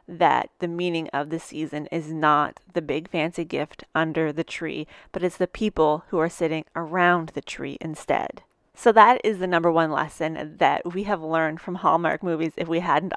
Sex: female